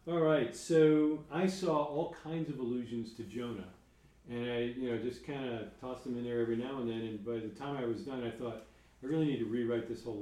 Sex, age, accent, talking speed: male, 40-59, American, 240 wpm